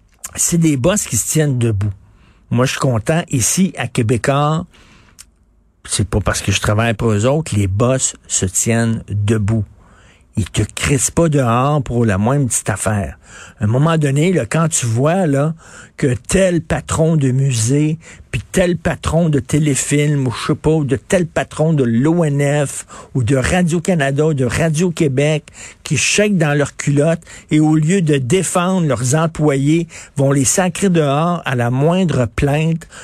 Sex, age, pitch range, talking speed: male, 50-69, 115-160 Hz, 170 wpm